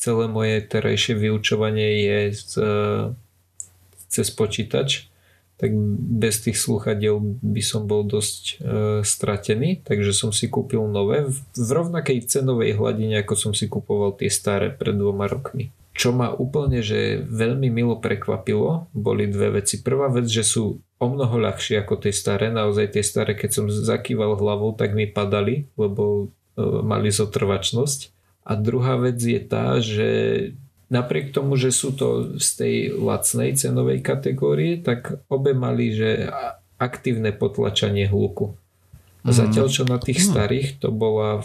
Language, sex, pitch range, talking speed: Slovak, male, 100-120 Hz, 145 wpm